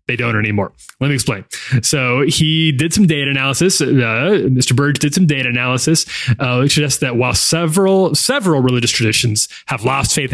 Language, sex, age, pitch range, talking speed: English, male, 30-49, 125-165 Hz, 180 wpm